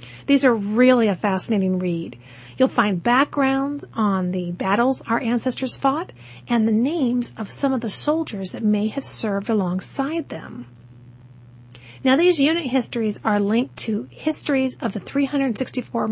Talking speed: 150 wpm